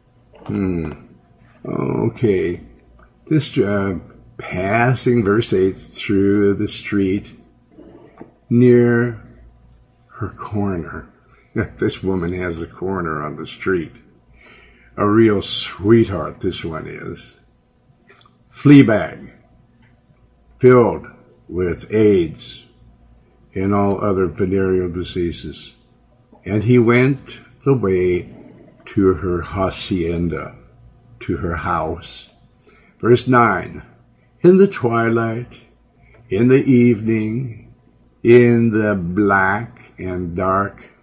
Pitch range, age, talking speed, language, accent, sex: 90-120 Hz, 60-79, 90 wpm, English, American, male